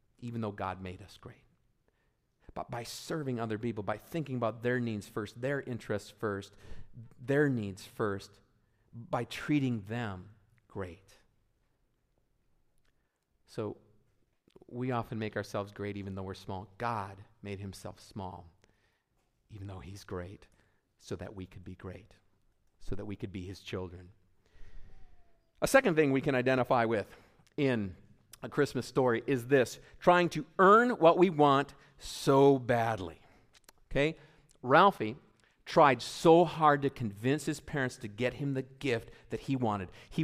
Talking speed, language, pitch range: 145 wpm, English, 105-145 Hz